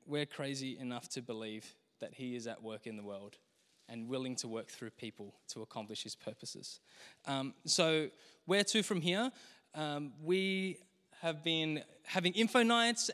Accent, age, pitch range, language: Australian, 20-39, 135-180 Hz, English